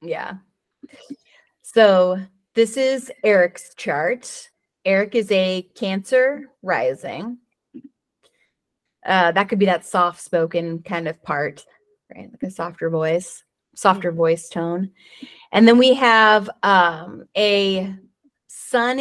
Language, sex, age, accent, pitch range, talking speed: English, female, 30-49, American, 175-230 Hz, 115 wpm